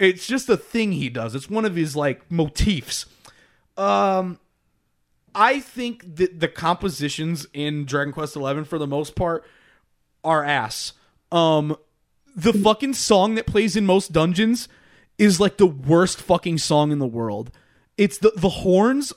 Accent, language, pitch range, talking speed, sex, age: American, English, 160-225 Hz, 155 wpm, male, 20-39